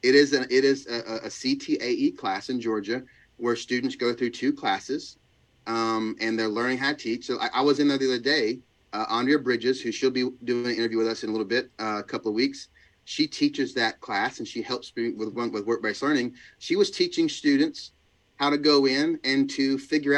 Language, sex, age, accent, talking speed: English, male, 30-49, American, 225 wpm